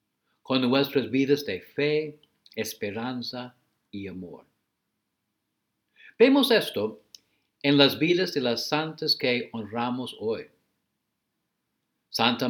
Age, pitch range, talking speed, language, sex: 60-79, 125-165 Hz, 95 wpm, English, male